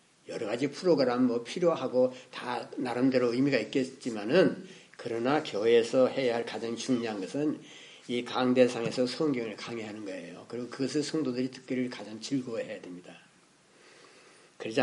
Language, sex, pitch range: Korean, male, 125-195 Hz